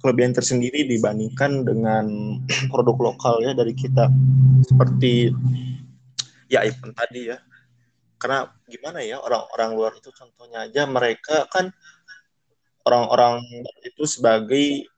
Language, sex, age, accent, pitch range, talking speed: Indonesian, male, 20-39, native, 115-135 Hz, 110 wpm